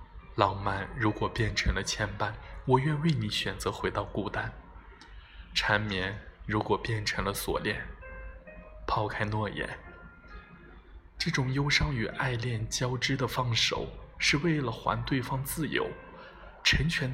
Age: 20-39